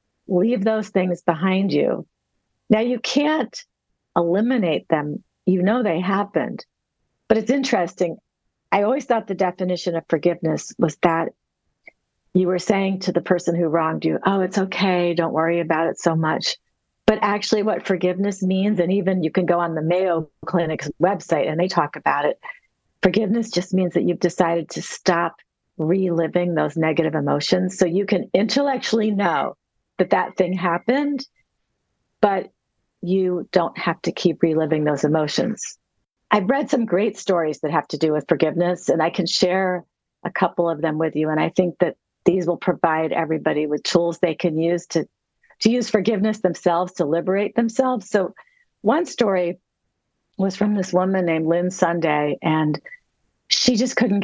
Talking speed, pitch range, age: 165 wpm, 165-205 Hz, 50-69